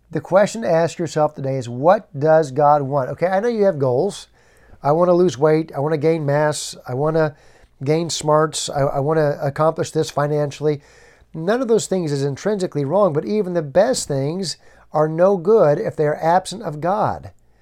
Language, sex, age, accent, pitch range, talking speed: English, male, 50-69, American, 140-175 Hz, 190 wpm